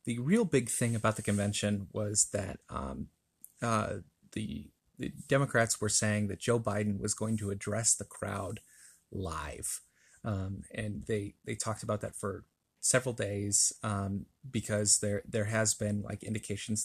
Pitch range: 105-120 Hz